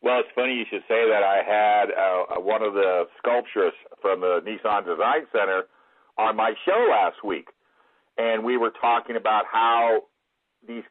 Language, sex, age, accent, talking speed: English, male, 50-69, American, 170 wpm